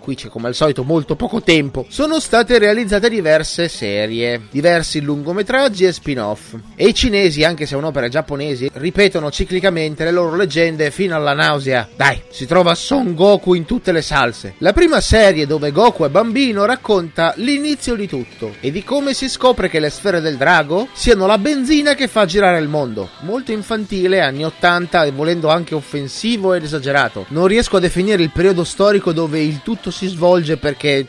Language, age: Italian, 30-49